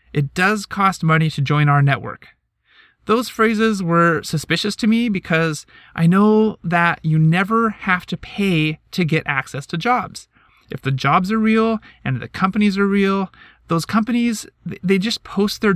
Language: English